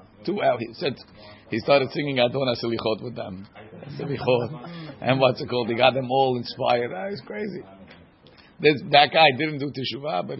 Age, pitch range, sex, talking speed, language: 50-69, 115-150 Hz, male, 165 wpm, English